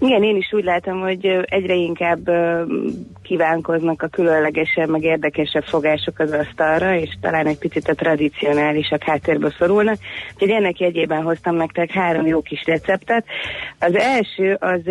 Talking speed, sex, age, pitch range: 150 wpm, female, 30-49, 155-185 Hz